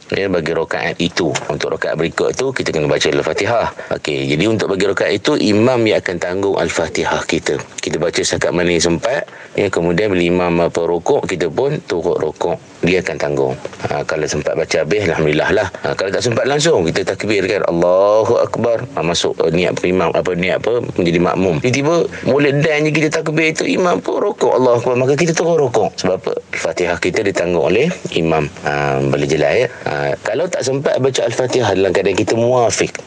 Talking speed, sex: 190 wpm, male